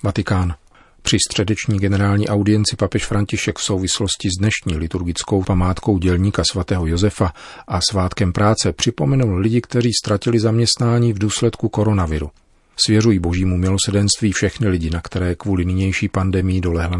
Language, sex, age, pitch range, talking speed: Czech, male, 40-59, 90-105 Hz, 135 wpm